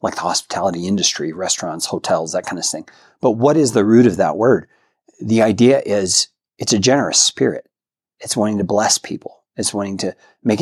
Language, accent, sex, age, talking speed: English, American, male, 40-59, 190 wpm